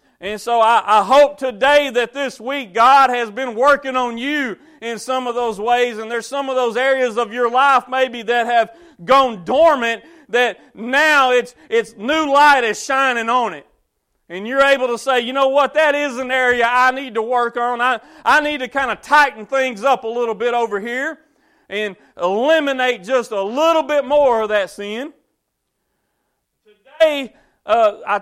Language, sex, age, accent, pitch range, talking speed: English, male, 40-59, American, 225-275 Hz, 185 wpm